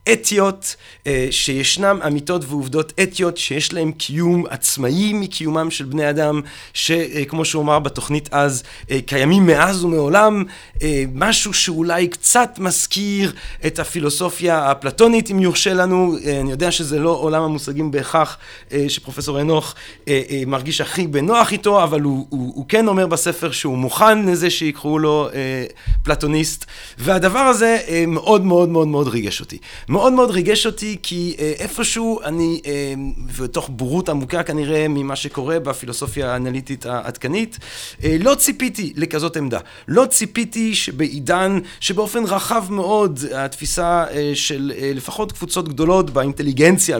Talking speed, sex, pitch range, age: 130 wpm, male, 140-180 Hz, 40-59